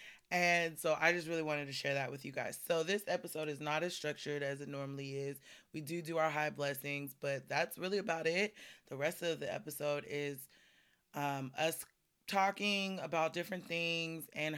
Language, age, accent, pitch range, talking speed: English, 20-39, American, 140-170 Hz, 195 wpm